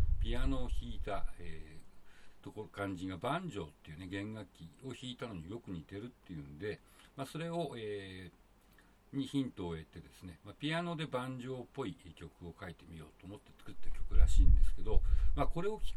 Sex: male